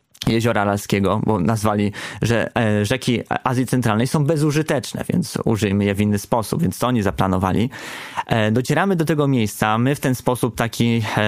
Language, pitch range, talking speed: Polish, 115-150 Hz, 155 wpm